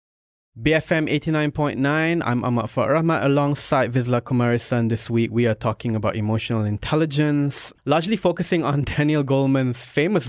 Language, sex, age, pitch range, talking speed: English, male, 20-39, 110-130 Hz, 130 wpm